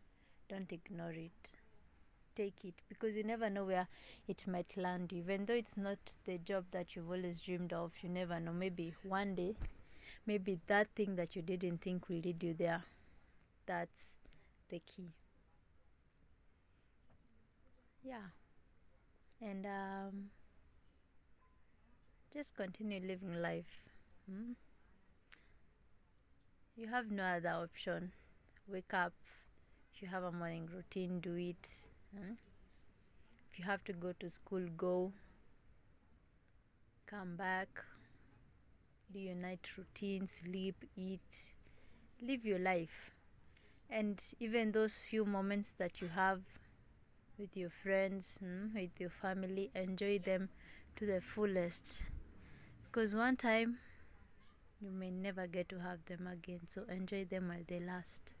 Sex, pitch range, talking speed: female, 170-200 Hz, 125 wpm